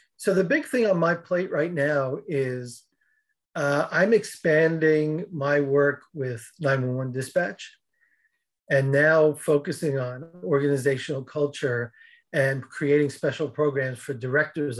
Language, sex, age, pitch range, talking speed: English, male, 40-59, 135-160 Hz, 120 wpm